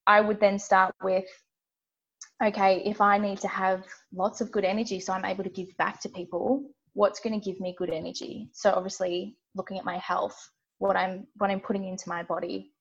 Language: English